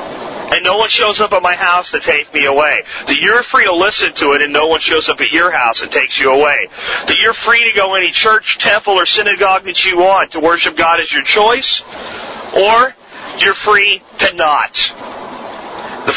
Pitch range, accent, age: 165-215 Hz, American, 40-59